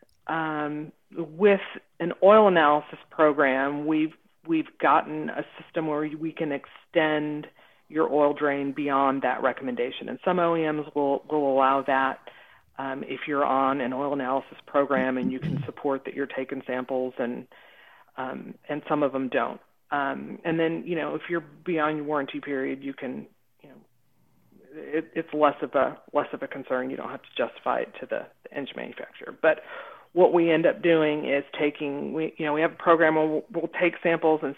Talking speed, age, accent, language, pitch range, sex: 185 wpm, 40-59, American, English, 140-160 Hz, female